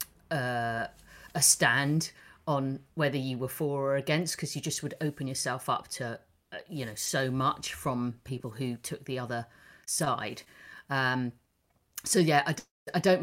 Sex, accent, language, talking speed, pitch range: female, British, English, 160 wpm, 130-160 Hz